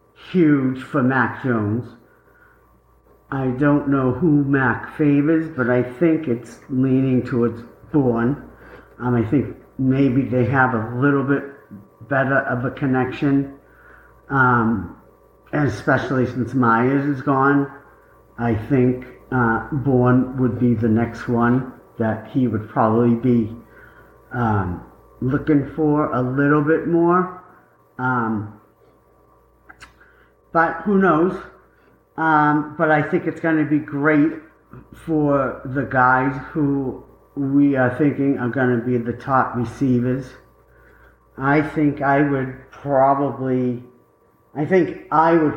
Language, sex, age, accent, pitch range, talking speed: English, male, 50-69, American, 120-145 Hz, 120 wpm